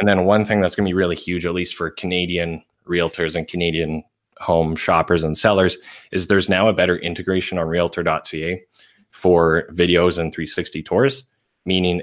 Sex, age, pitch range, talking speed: male, 20-39, 85-95 Hz, 175 wpm